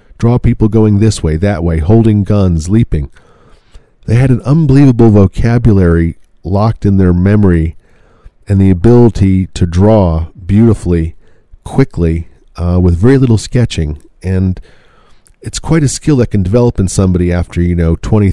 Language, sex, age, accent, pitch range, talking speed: English, male, 40-59, American, 85-110 Hz, 145 wpm